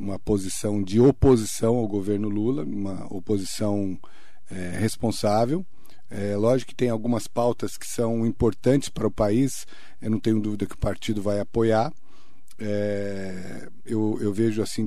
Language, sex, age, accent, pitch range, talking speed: Portuguese, male, 50-69, Brazilian, 105-120 Hz, 150 wpm